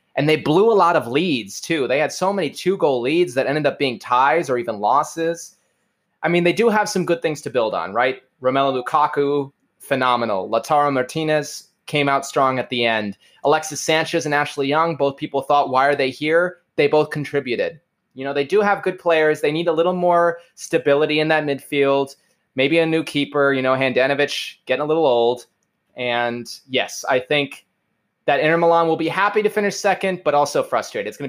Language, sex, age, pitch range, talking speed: English, male, 20-39, 140-170 Hz, 200 wpm